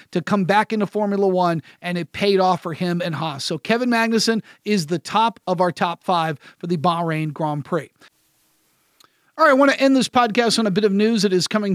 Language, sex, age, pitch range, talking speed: English, male, 40-59, 180-220 Hz, 225 wpm